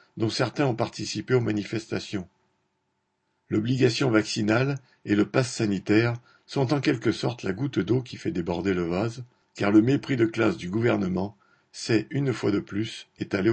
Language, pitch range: French, 105-125 Hz